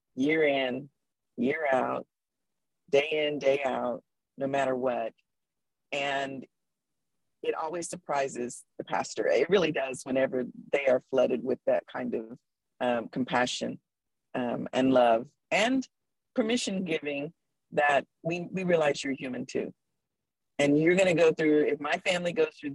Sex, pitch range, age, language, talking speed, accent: female, 135-175 Hz, 40-59, English, 140 wpm, American